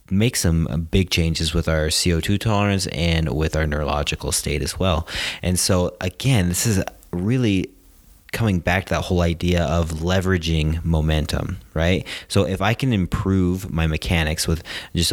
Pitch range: 80-95 Hz